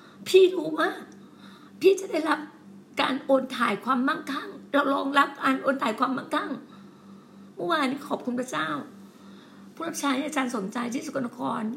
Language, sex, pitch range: Thai, female, 220-280 Hz